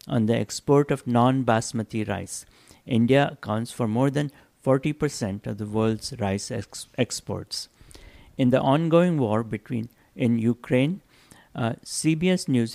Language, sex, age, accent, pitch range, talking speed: English, male, 60-79, Indian, 115-140 Hz, 130 wpm